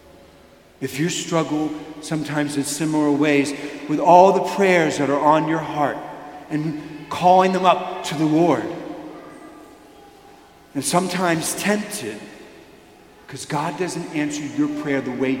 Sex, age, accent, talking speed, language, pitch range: male, 50-69, American, 130 wpm, English, 150-210 Hz